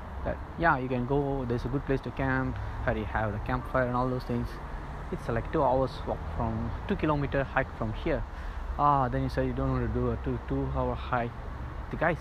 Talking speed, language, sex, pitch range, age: 230 wpm, English, male, 85-130 Hz, 20-39